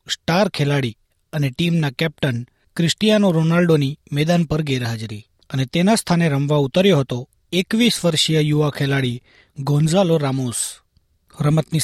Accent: native